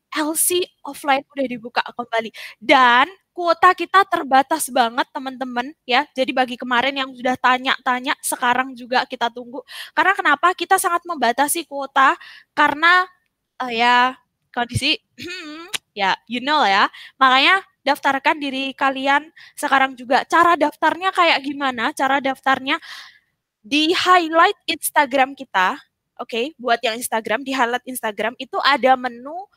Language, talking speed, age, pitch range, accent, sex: Indonesian, 130 wpm, 10-29, 250-305 Hz, native, female